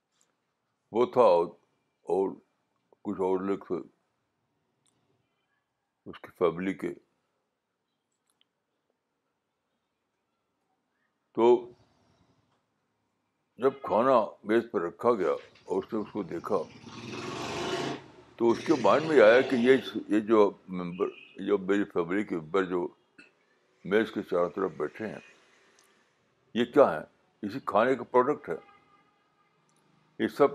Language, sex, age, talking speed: Urdu, male, 60-79, 100 wpm